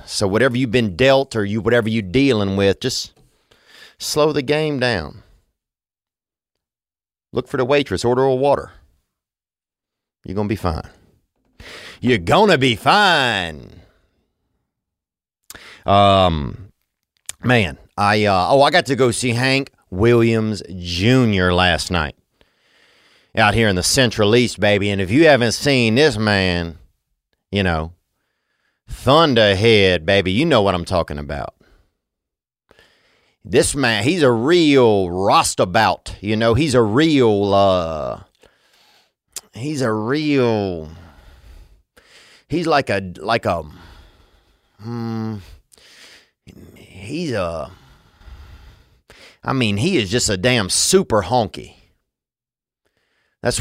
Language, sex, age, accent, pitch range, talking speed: English, male, 40-59, American, 90-125 Hz, 115 wpm